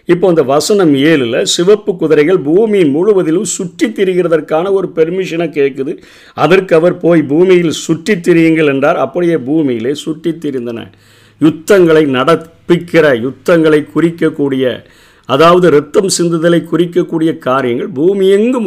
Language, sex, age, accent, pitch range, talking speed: Tamil, male, 50-69, native, 140-175 Hz, 105 wpm